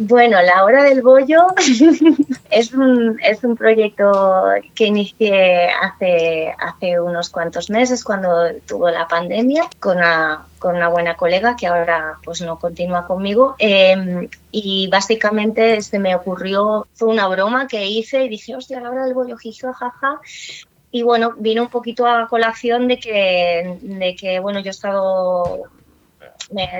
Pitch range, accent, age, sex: 175-230 Hz, Spanish, 20-39, female